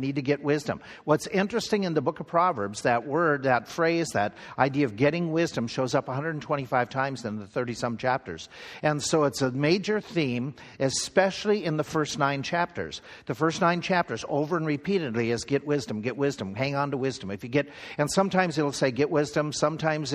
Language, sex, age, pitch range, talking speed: English, male, 50-69, 130-160 Hz, 200 wpm